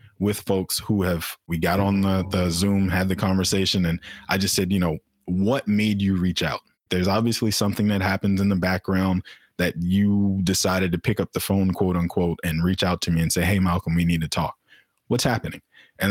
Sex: male